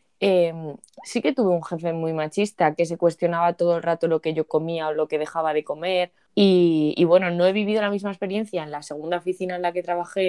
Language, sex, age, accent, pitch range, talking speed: Spanish, female, 20-39, Spanish, 160-195 Hz, 240 wpm